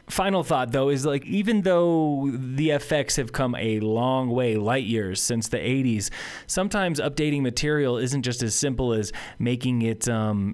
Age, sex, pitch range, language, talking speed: 20-39, male, 110-135 Hz, English, 170 wpm